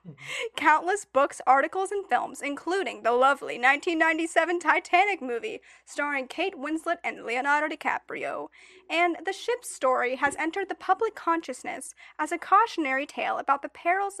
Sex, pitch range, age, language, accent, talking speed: female, 270-375 Hz, 10-29, English, American, 140 wpm